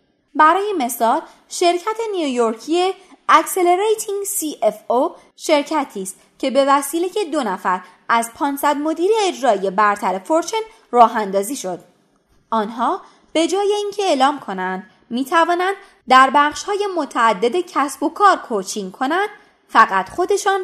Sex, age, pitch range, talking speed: female, 20-39, 220-360 Hz, 120 wpm